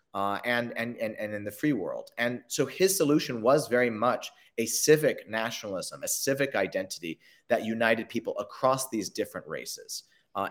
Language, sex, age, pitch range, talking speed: English, male, 30-49, 110-145 Hz, 170 wpm